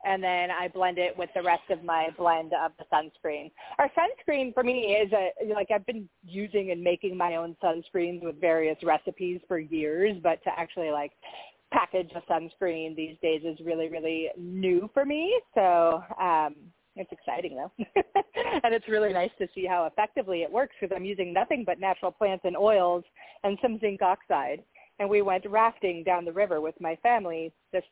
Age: 30-49